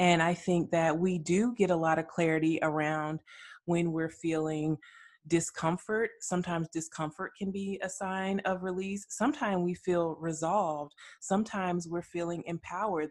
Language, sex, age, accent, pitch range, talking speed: English, female, 20-39, American, 155-175 Hz, 145 wpm